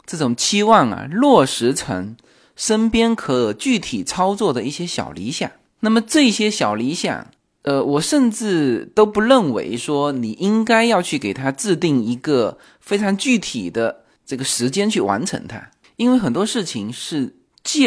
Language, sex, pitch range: Chinese, male, 135-225 Hz